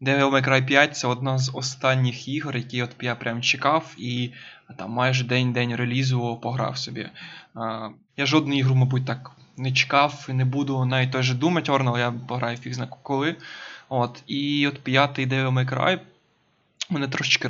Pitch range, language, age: 130-145 Hz, Ukrainian, 20-39